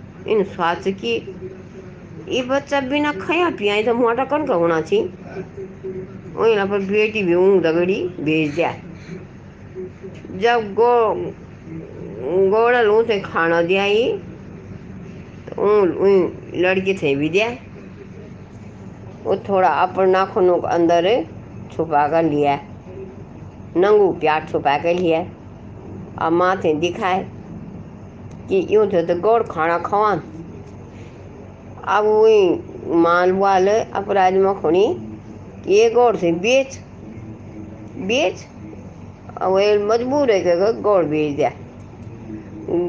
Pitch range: 145-215 Hz